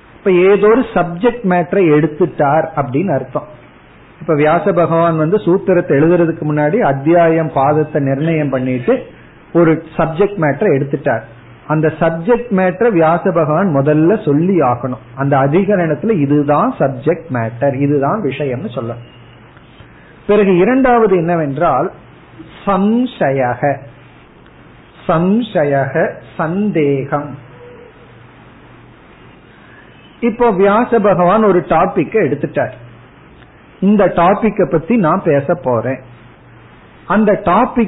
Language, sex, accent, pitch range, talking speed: Tamil, male, native, 145-200 Hz, 60 wpm